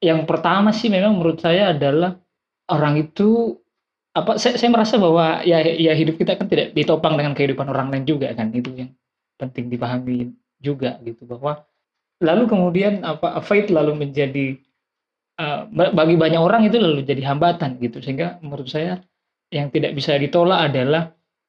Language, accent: Indonesian, native